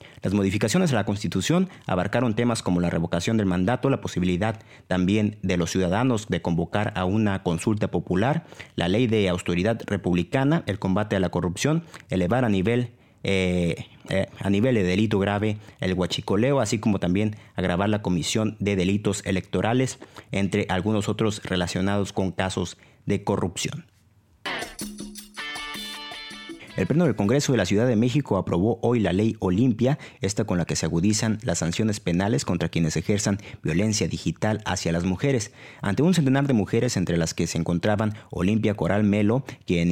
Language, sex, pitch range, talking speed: Spanish, male, 90-115 Hz, 160 wpm